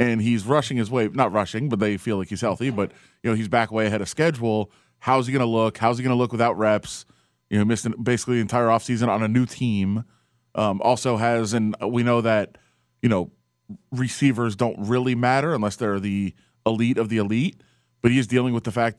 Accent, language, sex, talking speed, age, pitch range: American, English, male, 230 wpm, 30-49, 110-130 Hz